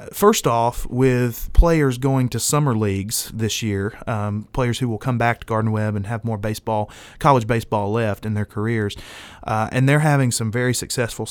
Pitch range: 105-130 Hz